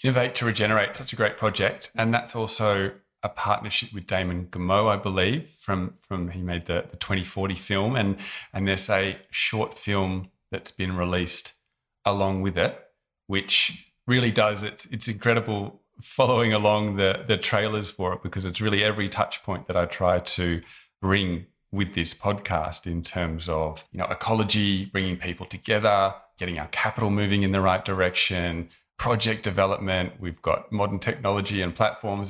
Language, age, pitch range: English, 30-49, 90-105 Hz